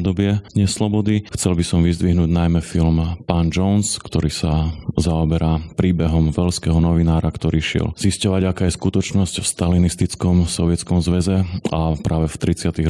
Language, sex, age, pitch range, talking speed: Slovak, male, 30-49, 80-90 Hz, 140 wpm